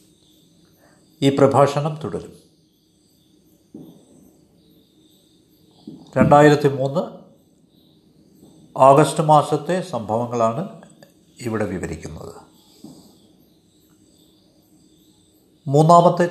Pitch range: 130-180 Hz